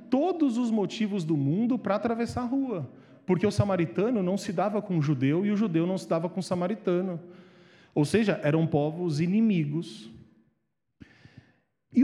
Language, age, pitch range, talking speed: Portuguese, 40-59, 145-220 Hz, 165 wpm